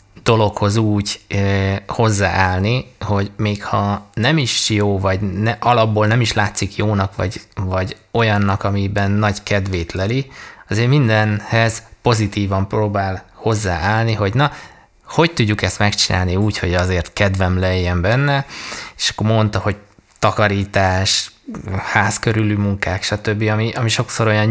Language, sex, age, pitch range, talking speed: Hungarian, male, 20-39, 100-110 Hz, 125 wpm